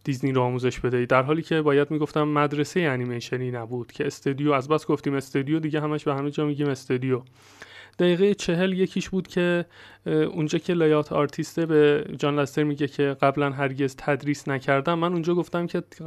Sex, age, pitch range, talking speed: male, 30-49, 140-170 Hz, 170 wpm